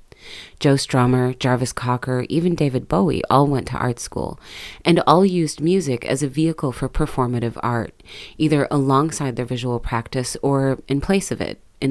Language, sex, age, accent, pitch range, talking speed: English, female, 30-49, American, 125-155 Hz, 165 wpm